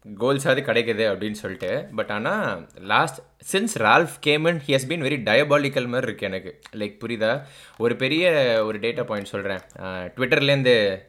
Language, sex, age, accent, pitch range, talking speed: Tamil, male, 20-39, native, 105-135 Hz, 145 wpm